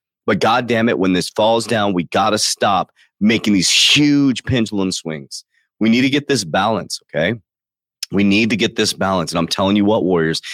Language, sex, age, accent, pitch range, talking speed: English, male, 30-49, American, 90-110 Hz, 205 wpm